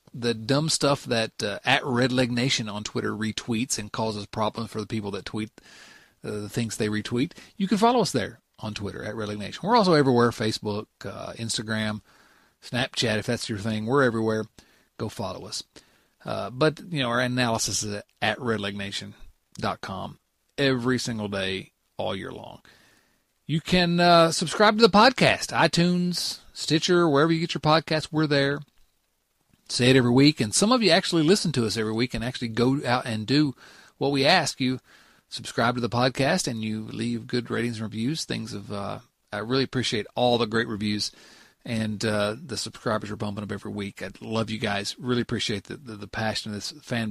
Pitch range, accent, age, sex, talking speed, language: 110-140 Hz, American, 40-59, male, 190 wpm, English